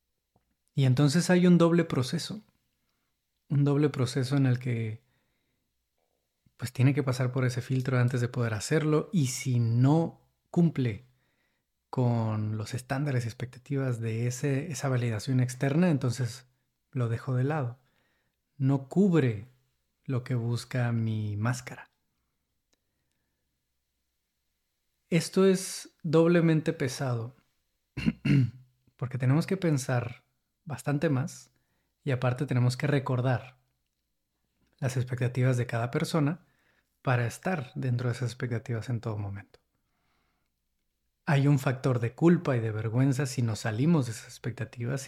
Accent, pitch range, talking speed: Mexican, 120-155 Hz, 120 wpm